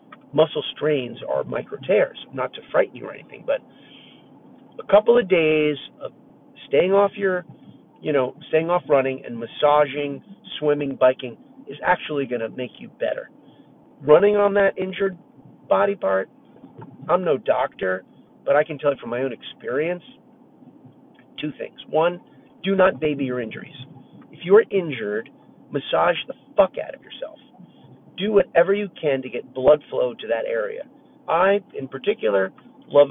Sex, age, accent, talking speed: male, 40-59, American, 160 wpm